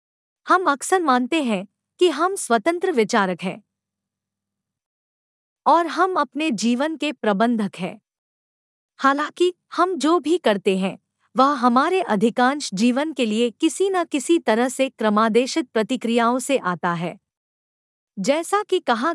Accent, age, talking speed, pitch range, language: native, 50-69, 130 wpm, 225-300 Hz, Hindi